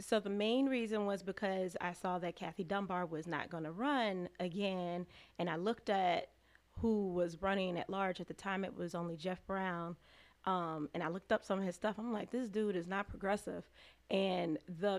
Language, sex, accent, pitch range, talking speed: English, female, American, 180-215 Hz, 210 wpm